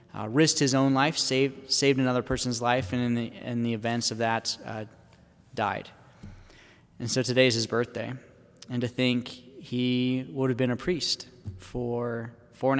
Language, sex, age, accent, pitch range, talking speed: English, male, 20-39, American, 120-150 Hz, 180 wpm